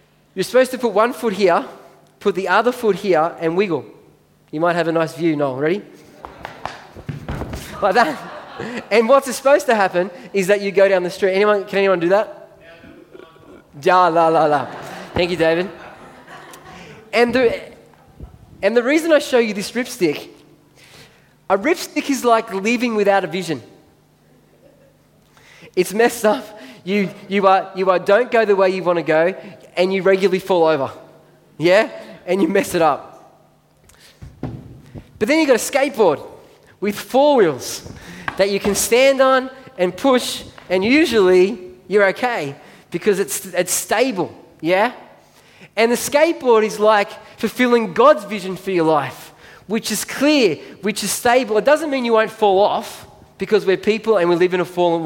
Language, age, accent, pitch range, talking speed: English, 20-39, Australian, 180-235 Hz, 165 wpm